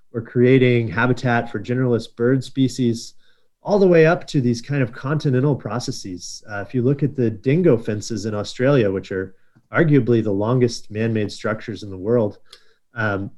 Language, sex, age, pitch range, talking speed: English, male, 30-49, 110-135 Hz, 165 wpm